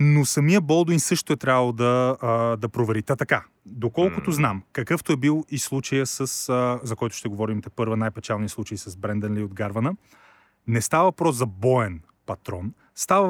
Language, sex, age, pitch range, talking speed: Bulgarian, male, 30-49, 110-140 Hz, 185 wpm